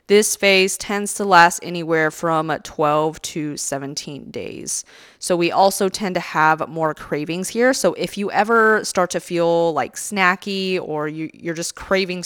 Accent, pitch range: American, 160-185 Hz